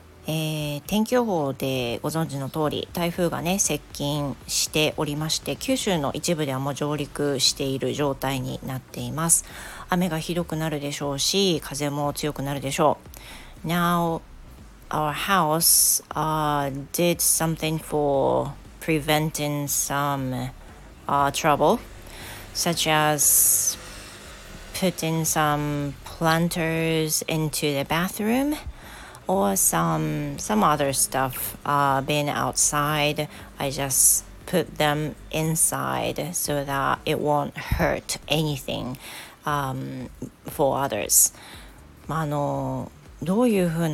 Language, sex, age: Japanese, female, 40-59